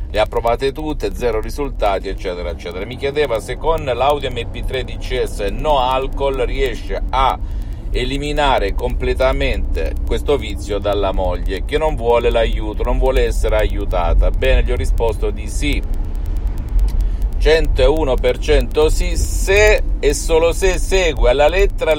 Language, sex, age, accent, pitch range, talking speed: Italian, male, 50-69, native, 95-130 Hz, 135 wpm